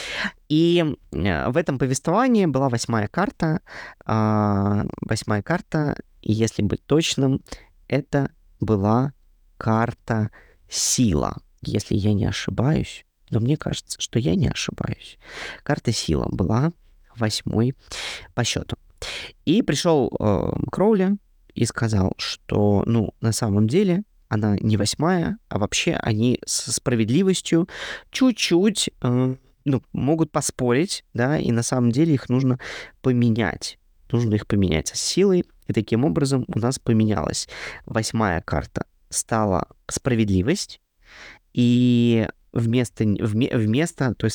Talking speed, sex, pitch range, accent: 115 wpm, male, 110-145 Hz, native